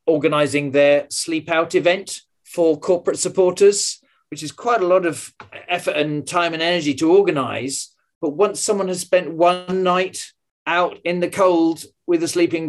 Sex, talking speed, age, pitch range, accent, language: male, 165 wpm, 40-59, 150-180 Hz, British, English